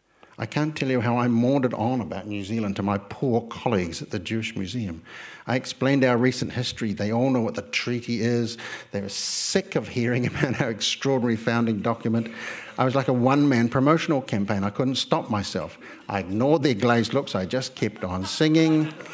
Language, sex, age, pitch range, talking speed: English, male, 60-79, 110-145 Hz, 195 wpm